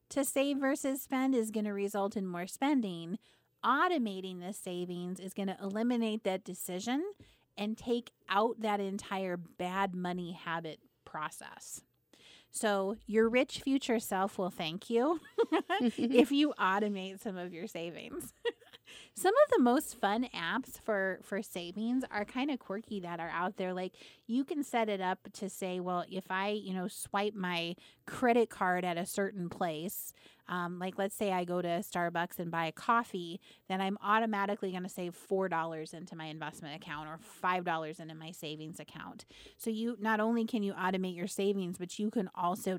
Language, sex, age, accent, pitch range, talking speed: English, female, 30-49, American, 180-225 Hz, 175 wpm